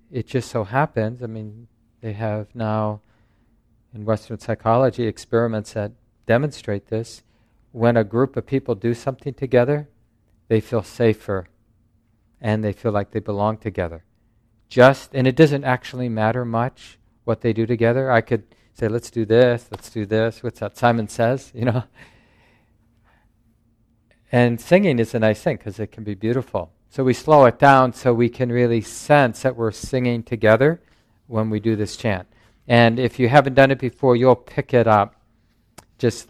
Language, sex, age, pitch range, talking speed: English, male, 50-69, 110-120 Hz, 170 wpm